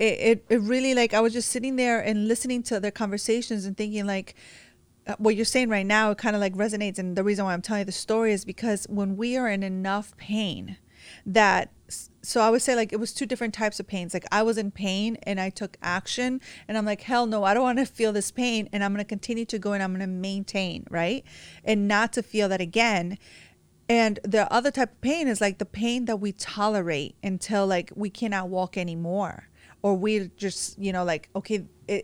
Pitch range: 195-225 Hz